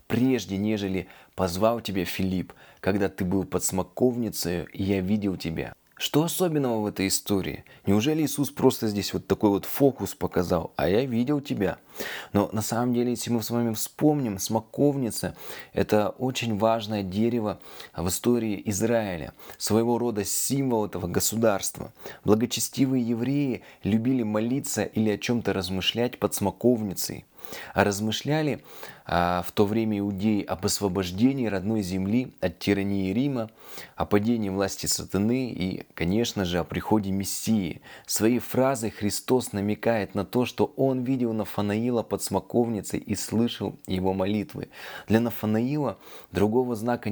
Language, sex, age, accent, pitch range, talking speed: Russian, male, 20-39, native, 95-120 Hz, 135 wpm